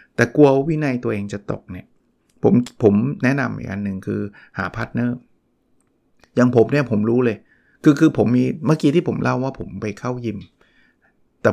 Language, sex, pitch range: Thai, male, 105-130 Hz